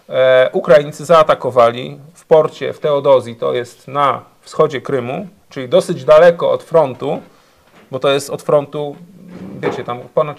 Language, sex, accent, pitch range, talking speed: Polish, male, native, 130-170 Hz, 140 wpm